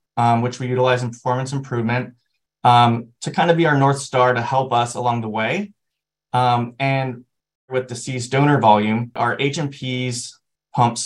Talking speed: 165 wpm